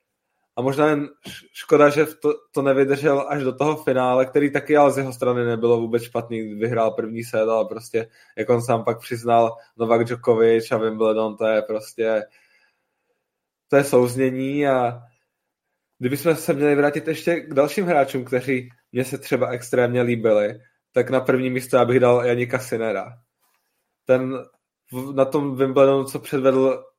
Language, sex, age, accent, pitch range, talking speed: Czech, male, 20-39, native, 120-135 Hz, 160 wpm